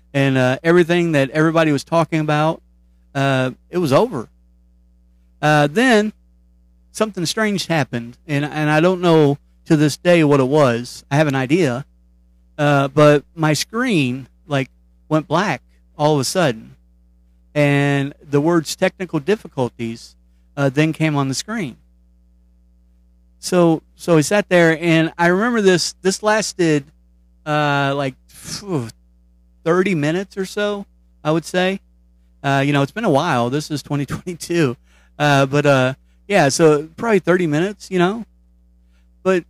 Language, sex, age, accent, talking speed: English, male, 40-59, American, 145 wpm